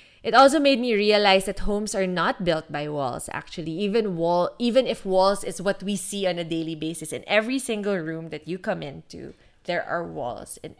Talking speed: 210 wpm